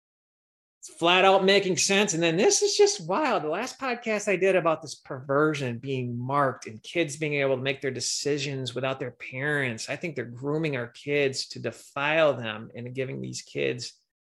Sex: male